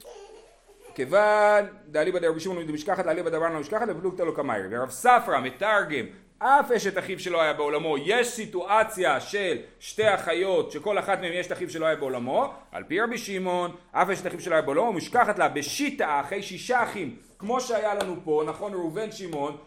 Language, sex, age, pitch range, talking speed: Hebrew, male, 30-49, 145-210 Hz, 175 wpm